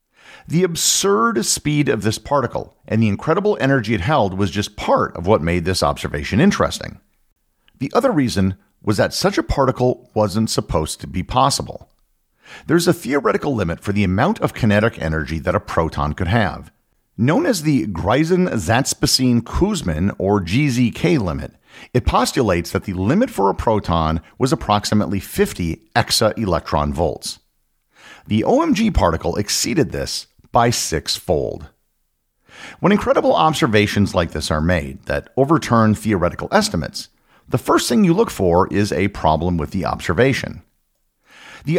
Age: 50-69